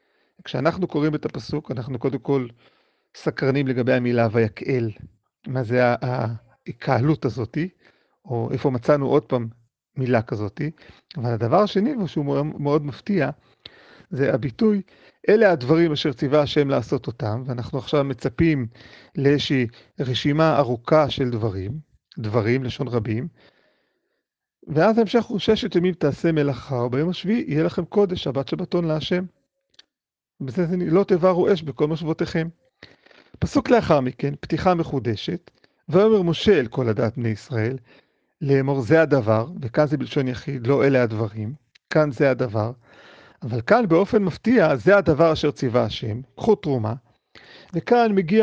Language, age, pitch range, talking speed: Hebrew, 40-59, 130-170 Hz, 135 wpm